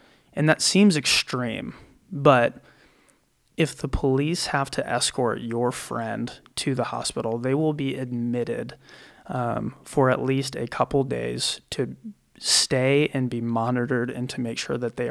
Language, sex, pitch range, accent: English, male, 120-140 Hz, American